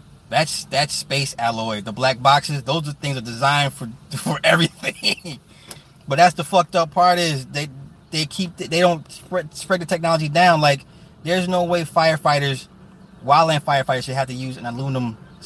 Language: English